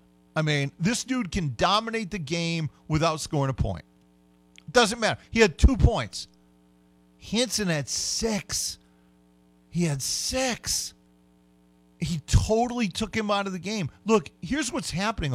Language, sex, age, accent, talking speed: English, male, 40-59, American, 140 wpm